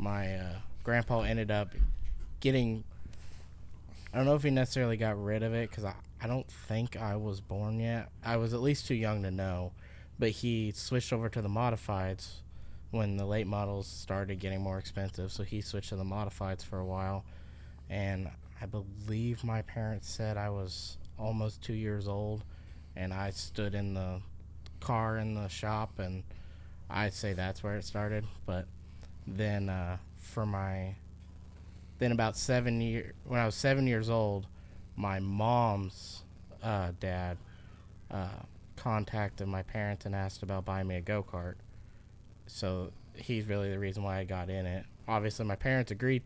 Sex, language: male, English